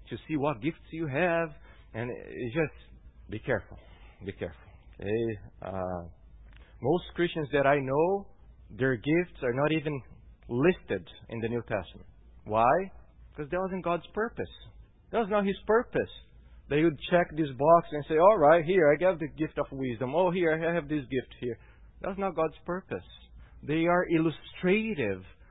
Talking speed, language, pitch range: 160 wpm, English, 135-215 Hz